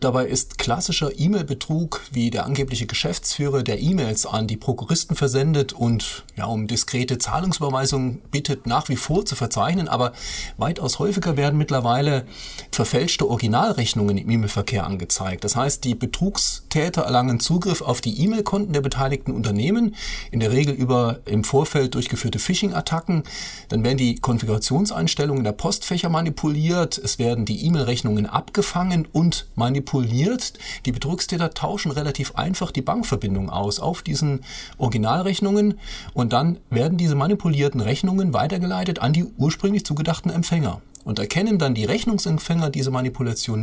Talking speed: 135 wpm